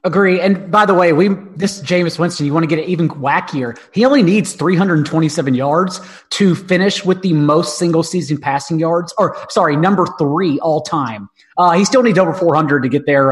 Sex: male